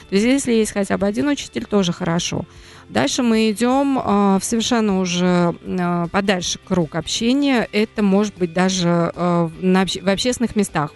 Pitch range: 180-230 Hz